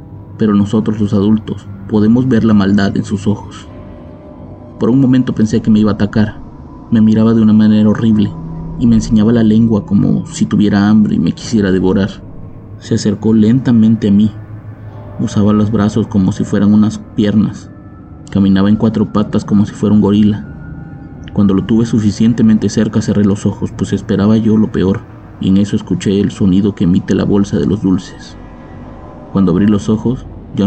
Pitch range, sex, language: 100-110 Hz, male, Spanish